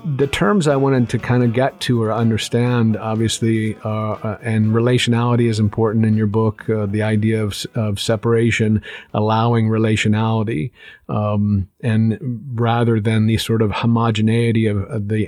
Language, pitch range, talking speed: English, 110-120 Hz, 150 wpm